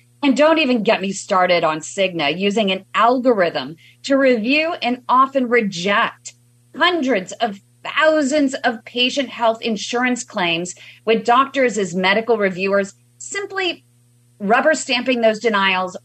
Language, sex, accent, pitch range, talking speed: English, female, American, 165-240 Hz, 125 wpm